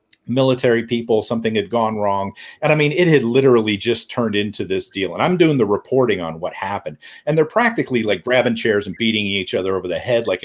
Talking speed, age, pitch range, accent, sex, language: 225 wpm, 40-59, 115-165 Hz, American, male, English